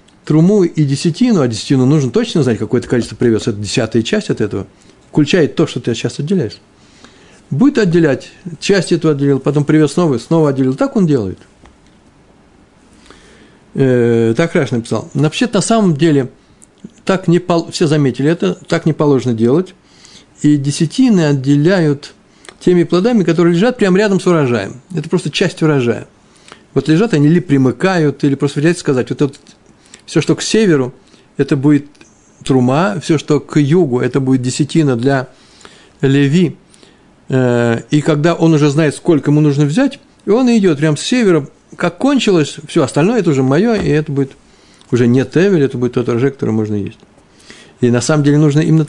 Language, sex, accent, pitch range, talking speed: Russian, male, native, 130-180 Hz, 160 wpm